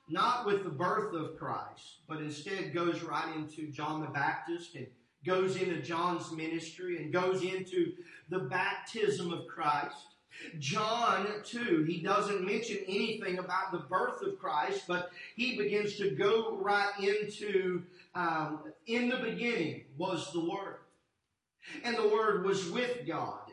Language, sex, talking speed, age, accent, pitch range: English, male, 145 wpm, 40-59, American, 175-230 Hz